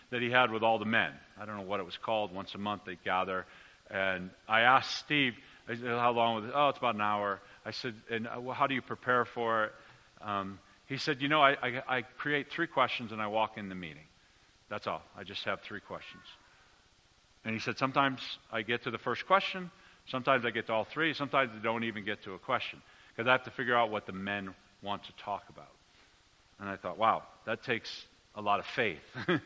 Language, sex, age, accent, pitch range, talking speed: English, male, 40-59, American, 100-130 Hz, 230 wpm